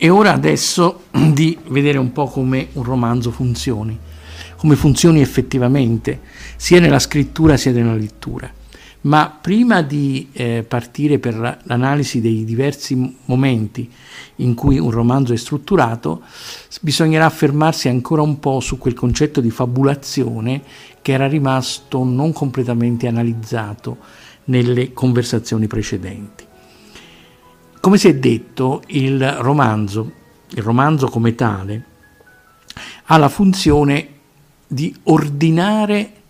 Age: 50-69